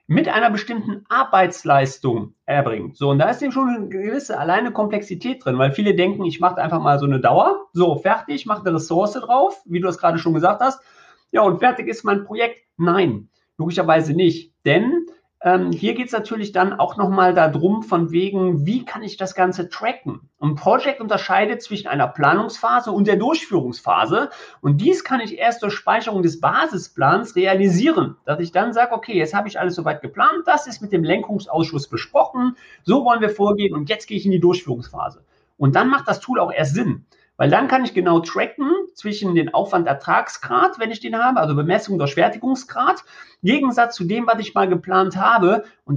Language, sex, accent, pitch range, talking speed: German, male, German, 170-230 Hz, 190 wpm